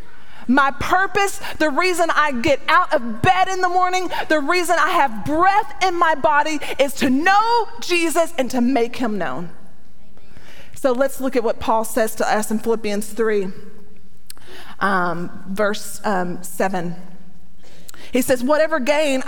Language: English